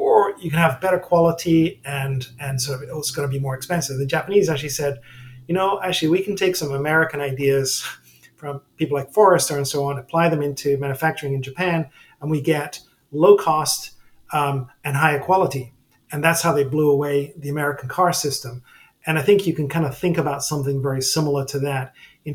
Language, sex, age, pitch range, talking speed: English, male, 40-59, 140-165 Hz, 205 wpm